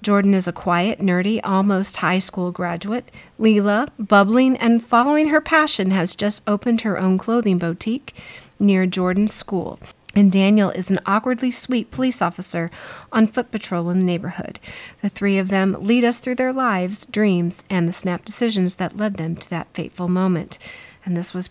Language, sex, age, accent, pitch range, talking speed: English, female, 40-59, American, 180-220 Hz, 175 wpm